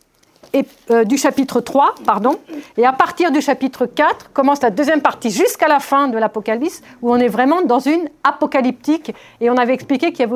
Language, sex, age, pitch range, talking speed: French, female, 50-69, 225-305 Hz, 205 wpm